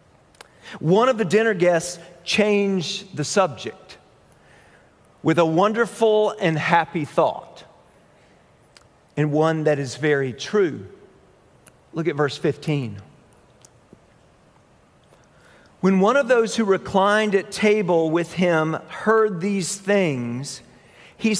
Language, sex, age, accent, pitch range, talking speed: English, male, 50-69, American, 150-210 Hz, 105 wpm